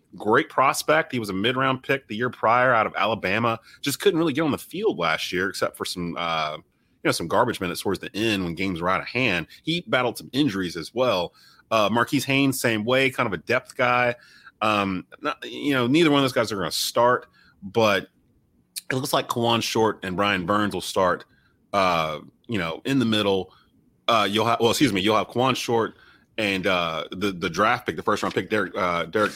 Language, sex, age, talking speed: English, male, 30-49, 225 wpm